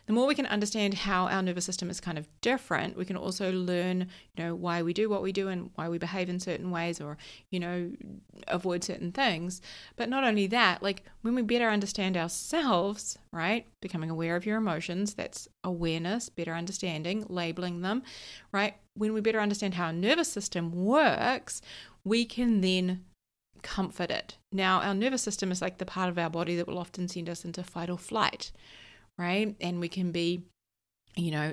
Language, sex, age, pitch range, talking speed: English, female, 30-49, 175-210 Hz, 195 wpm